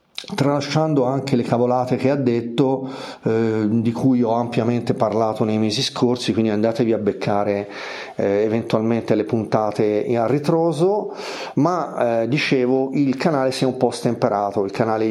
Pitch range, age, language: 115-135 Hz, 40-59, Italian